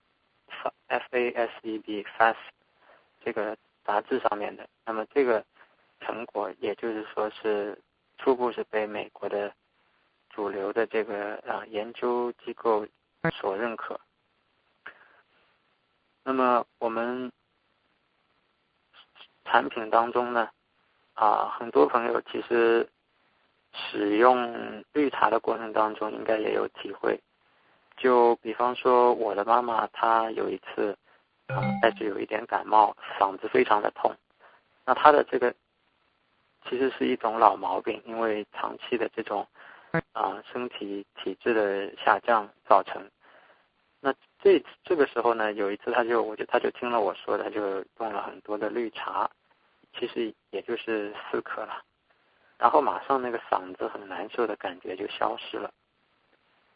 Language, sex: English, male